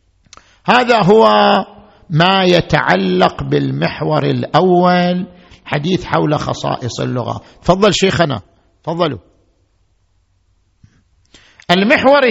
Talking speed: 70 wpm